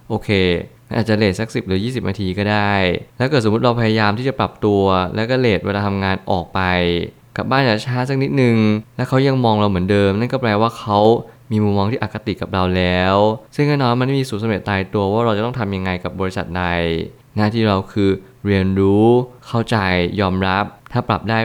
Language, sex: Thai, male